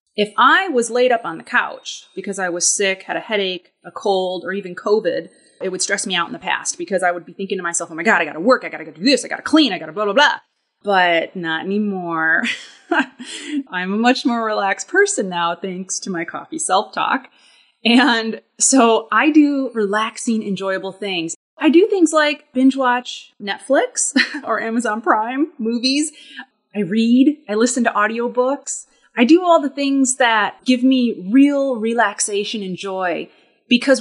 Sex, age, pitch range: female, 30-49, 190-265 Hz